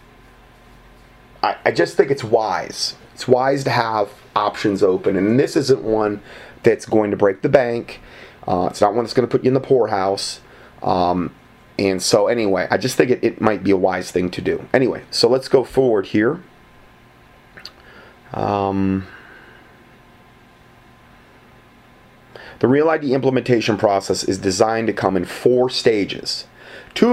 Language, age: English, 30-49